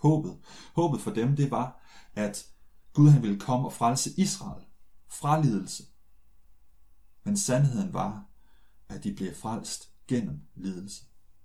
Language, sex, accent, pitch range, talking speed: Danish, male, native, 90-135 Hz, 125 wpm